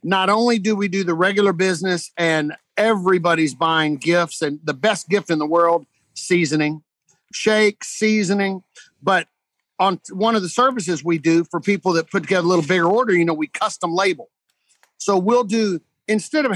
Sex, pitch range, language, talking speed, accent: male, 170-215 Hz, English, 180 wpm, American